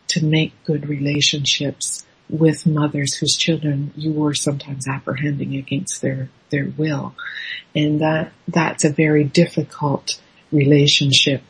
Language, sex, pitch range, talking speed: English, female, 140-170 Hz, 120 wpm